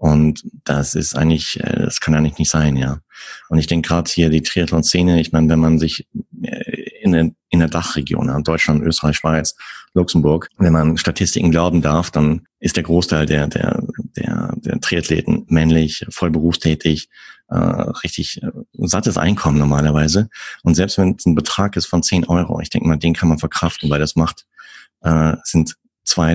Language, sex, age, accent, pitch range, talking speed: German, male, 30-49, German, 80-85 Hz, 170 wpm